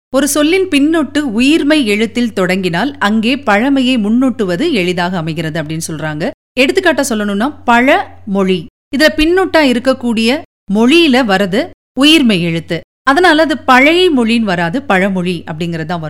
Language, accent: Tamil, native